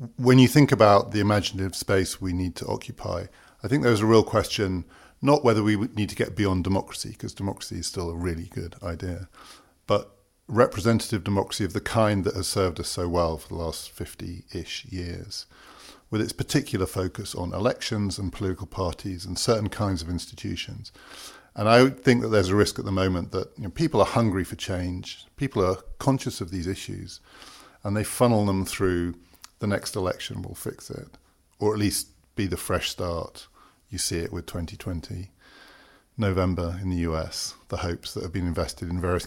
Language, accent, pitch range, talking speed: English, British, 90-110 Hz, 185 wpm